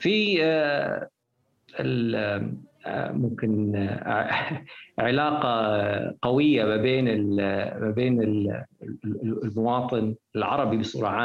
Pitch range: 110-145 Hz